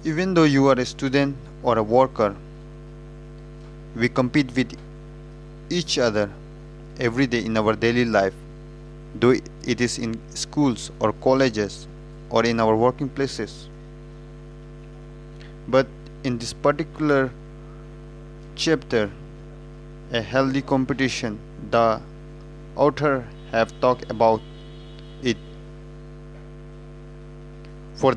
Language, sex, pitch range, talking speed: Hindi, male, 130-155 Hz, 100 wpm